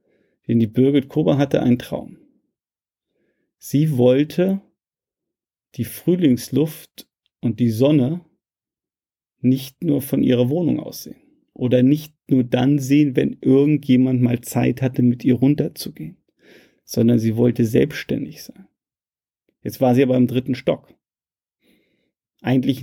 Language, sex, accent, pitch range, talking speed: German, male, German, 120-145 Hz, 120 wpm